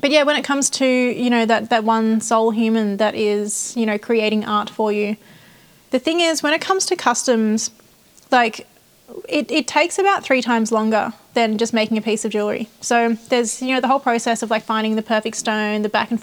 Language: English